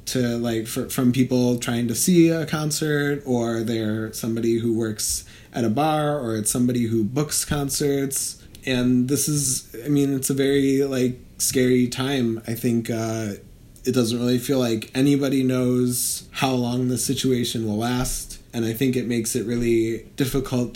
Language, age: Polish, 20-39